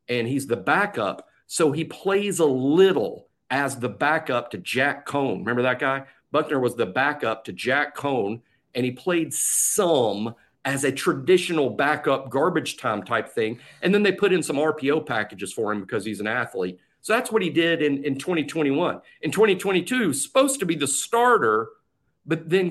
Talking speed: 180 wpm